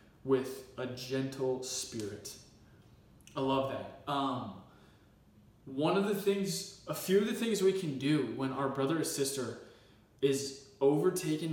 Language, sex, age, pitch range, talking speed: English, male, 20-39, 135-195 Hz, 140 wpm